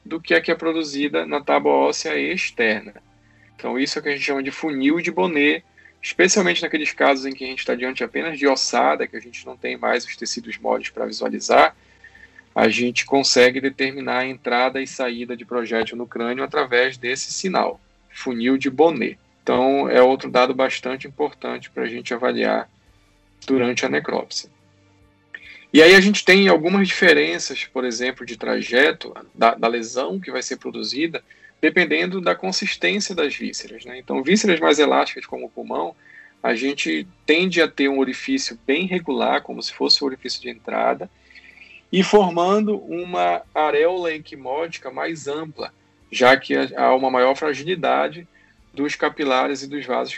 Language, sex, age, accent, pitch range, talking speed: Portuguese, male, 20-39, Brazilian, 120-160 Hz, 170 wpm